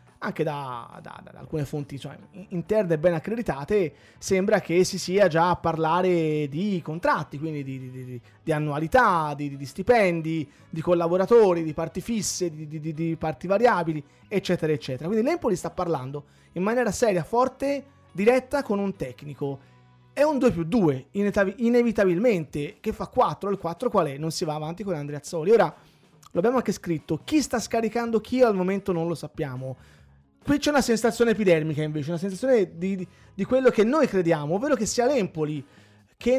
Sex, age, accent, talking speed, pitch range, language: male, 30-49, native, 170 wpm, 155-220 Hz, Italian